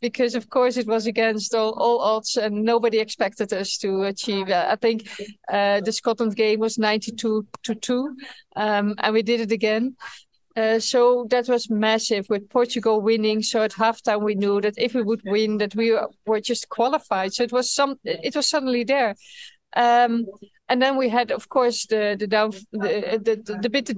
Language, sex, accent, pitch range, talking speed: English, female, Dutch, 210-240 Hz, 195 wpm